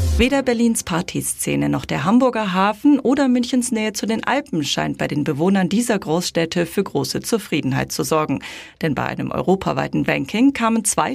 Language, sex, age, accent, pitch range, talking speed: German, female, 40-59, German, 170-245 Hz, 165 wpm